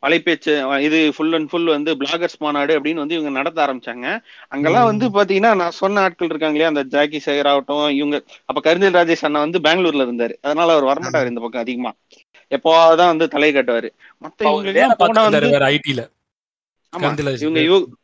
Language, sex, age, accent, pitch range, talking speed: Tamil, male, 30-49, native, 150-210 Hz, 150 wpm